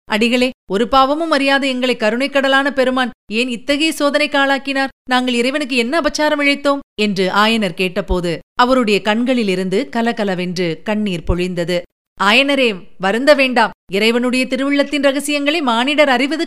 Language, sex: Tamil, female